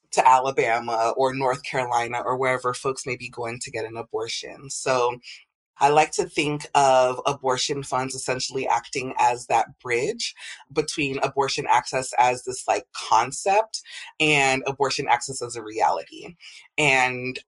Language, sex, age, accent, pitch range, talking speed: English, female, 20-39, American, 125-150 Hz, 145 wpm